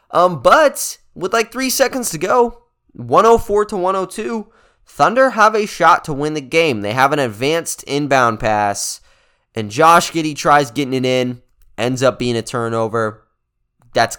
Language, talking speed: English, 160 wpm